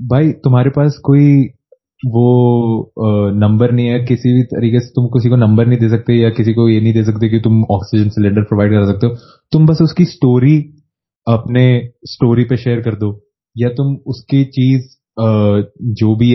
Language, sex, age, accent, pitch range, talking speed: Hindi, male, 20-39, native, 105-125 Hz, 185 wpm